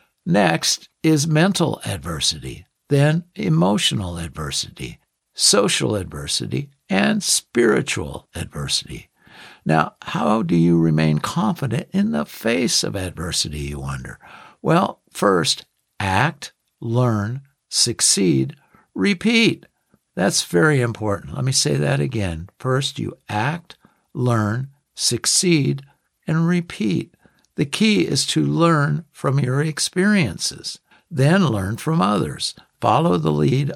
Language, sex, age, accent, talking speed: English, male, 60-79, American, 110 wpm